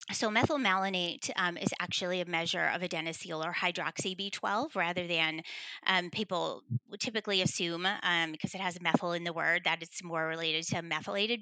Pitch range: 170-195 Hz